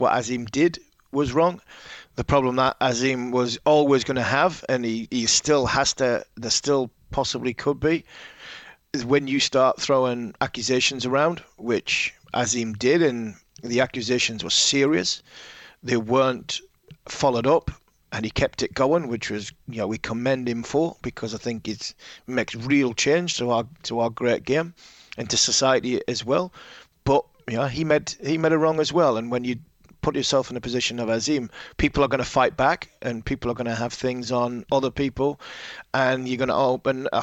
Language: English